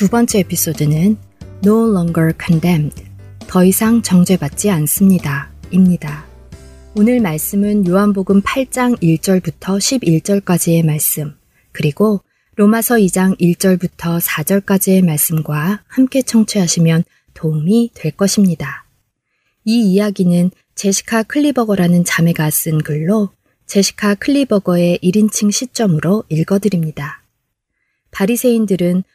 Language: Korean